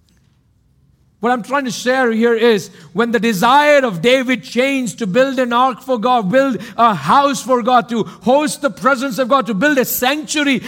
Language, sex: English, male